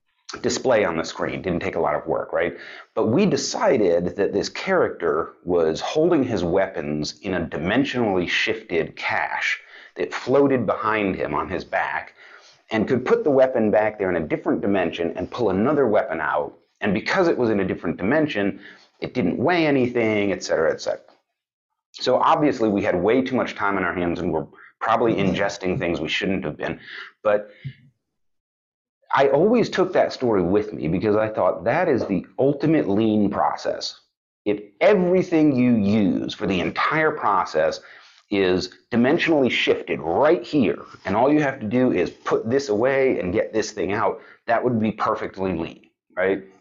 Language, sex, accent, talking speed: English, male, American, 175 wpm